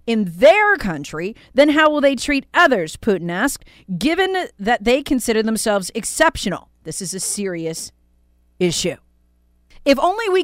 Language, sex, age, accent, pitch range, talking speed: English, female, 40-59, American, 180-295 Hz, 145 wpm